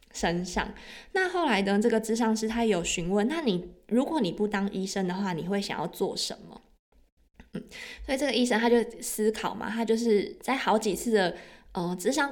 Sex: female